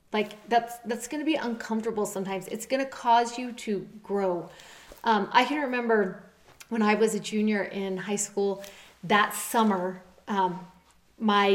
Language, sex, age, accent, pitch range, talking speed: English, female, 30-49, American, 195-230 Hz, 160 wpm